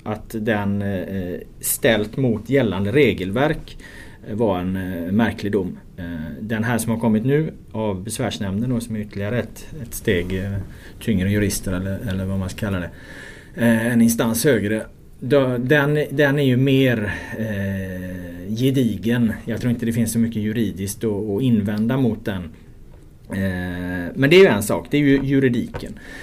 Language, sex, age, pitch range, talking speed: Swedish, male, 30-49, 100-125 Hz, 150 wpm